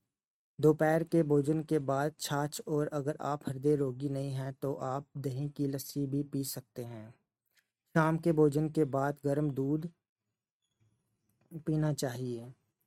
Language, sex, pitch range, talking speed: Hindi, male, 135-150 Hz, 145 wpm